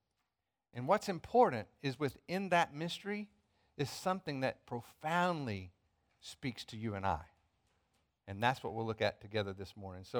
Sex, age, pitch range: male, 50-69, 95-130 Hz